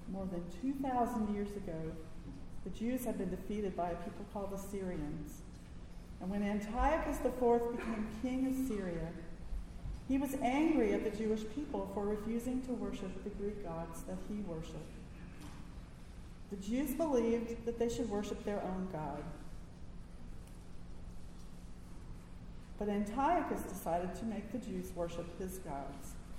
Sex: female